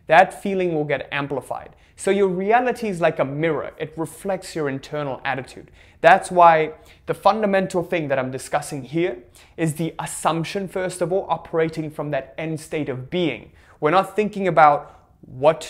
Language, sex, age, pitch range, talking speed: English, male, 20-39, 130-170 Hz, 170 wpm